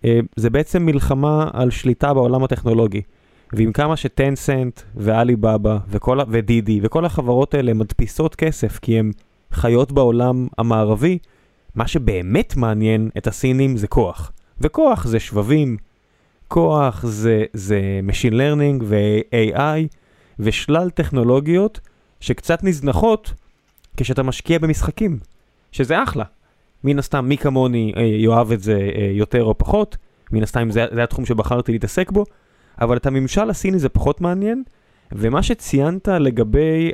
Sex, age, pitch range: male, 20-39, 110-145 Hz